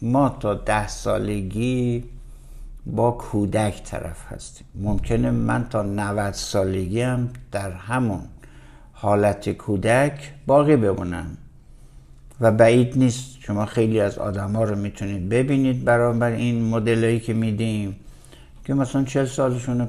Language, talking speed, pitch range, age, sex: Persian, 120 wpm, 100-130 Hz, 60-79, male